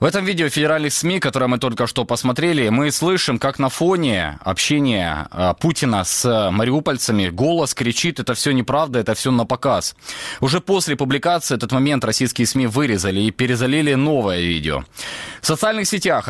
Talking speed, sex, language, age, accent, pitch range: 160 wpm, male, Ukrainian, 20-39, native, 110-145 Hz